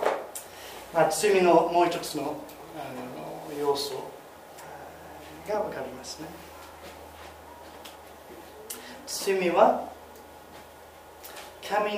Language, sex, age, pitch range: Japanese, male, 30-49, 175-245 Hz